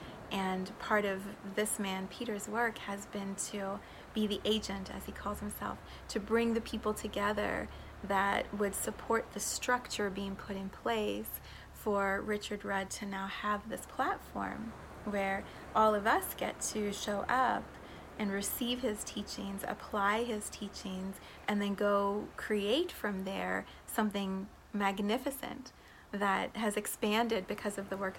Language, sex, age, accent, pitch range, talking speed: English, female, 30-49, American, 195-215 Hz, 145 wpm